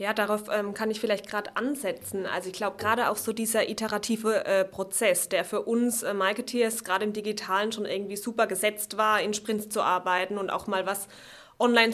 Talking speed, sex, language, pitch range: 195 wpm, female, German, 195-235 Hz